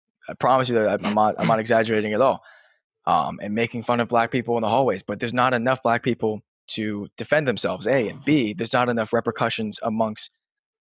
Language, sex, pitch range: English, male, 110-130 Hz